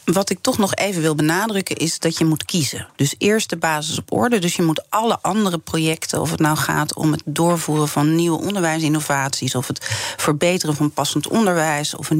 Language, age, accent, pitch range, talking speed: Dutch, 40-59, Dutch, 150-195 Hz, 205 wpm